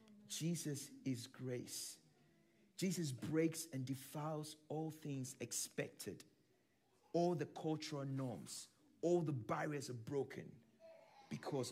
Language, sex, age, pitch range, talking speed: English, male, 50-69, 115-150 Hz, 100 wpm